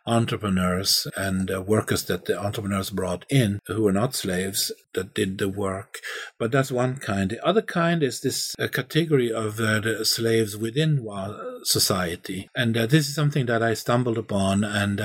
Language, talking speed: English, 170 wpm